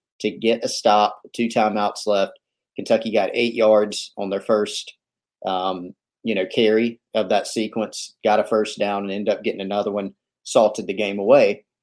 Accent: American